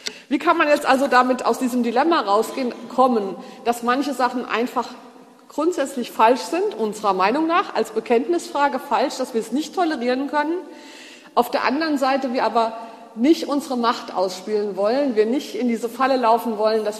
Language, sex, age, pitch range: German, female, 50-69, 225-290 Hz